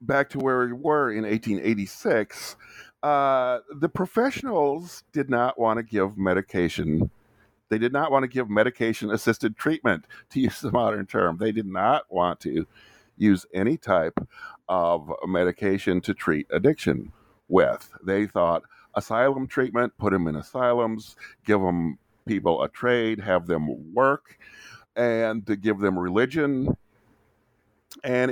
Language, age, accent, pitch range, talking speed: English, 50-69, American, 95-125 Hz, 140 wpm